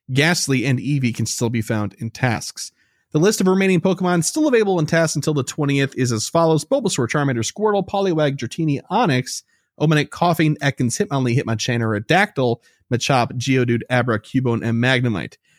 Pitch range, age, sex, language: 120-175 Hz, 30-49, male, English